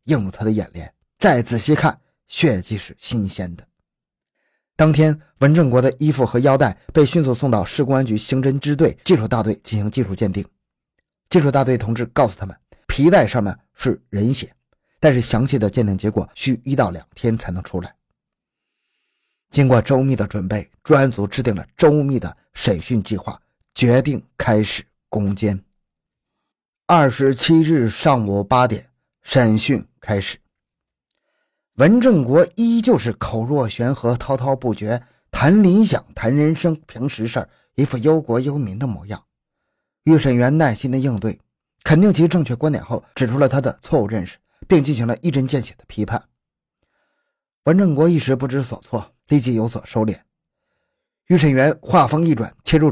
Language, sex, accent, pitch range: Chinese, male, native, 110-150 Hz